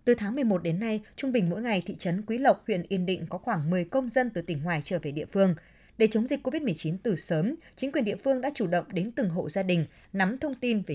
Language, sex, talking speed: Vietnamese, female, 275 wpm